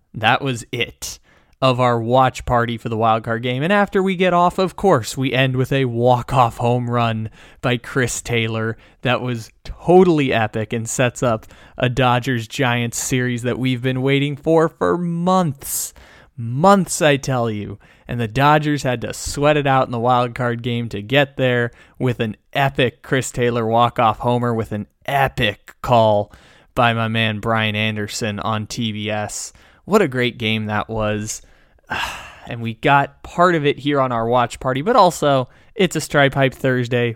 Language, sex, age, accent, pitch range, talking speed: English, male, 20-39, American, 115-140 Hz, 170 wpm